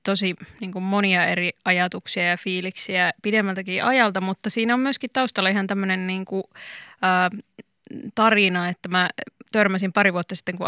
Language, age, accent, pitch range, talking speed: Finnish, 20-39, native, 180-210 Hz, 140 wpm